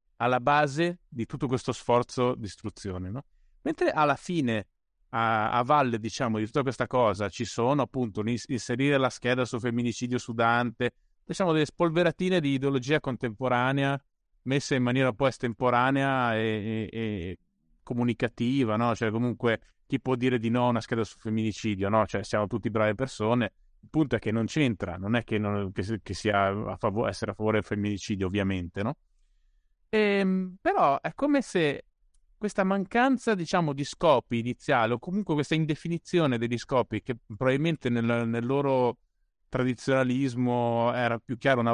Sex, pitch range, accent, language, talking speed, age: male, 110-155 Hz, native, Italian, 160 wpm, 30-49